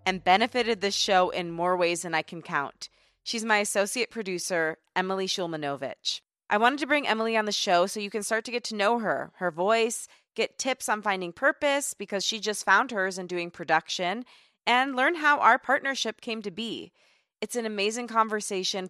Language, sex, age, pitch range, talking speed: English, female, 20-39, 180-235 Hz, 195 wpm